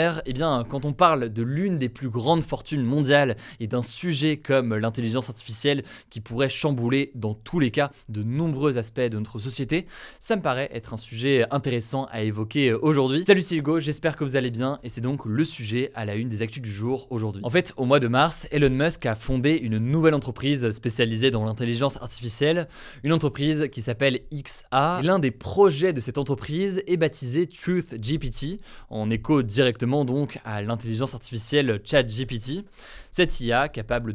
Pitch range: 115-145 Hz